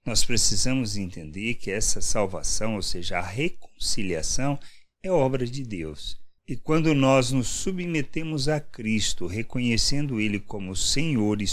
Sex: male